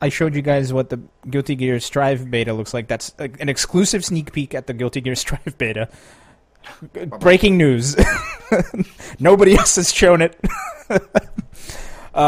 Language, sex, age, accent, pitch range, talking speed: English, male, 20-39, American, 115-155 Hz, 150 wpm